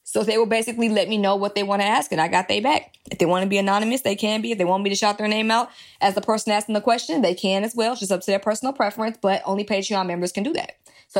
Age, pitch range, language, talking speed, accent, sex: 20-39, 185-215 Hz, English, 320 wpm, American, female